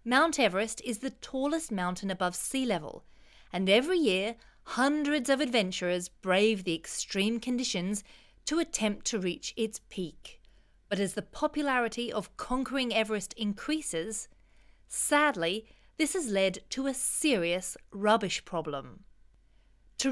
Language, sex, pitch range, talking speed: English, female, 195-270 Hz, 130 wpm